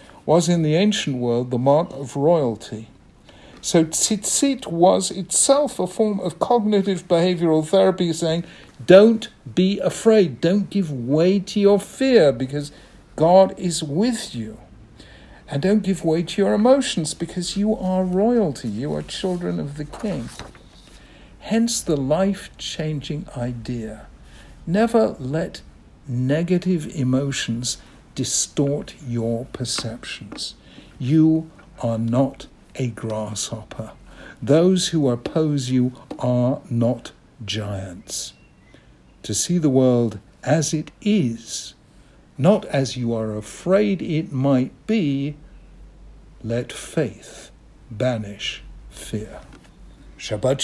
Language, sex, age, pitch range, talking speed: English, male, 60-79, 125-185 Hz, 110 wpm